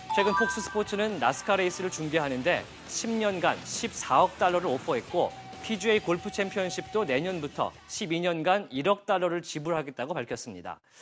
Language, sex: Korean, male